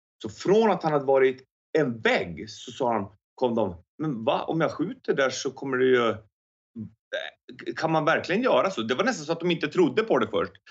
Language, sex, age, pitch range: English, male, 30-49, 115-180 Hz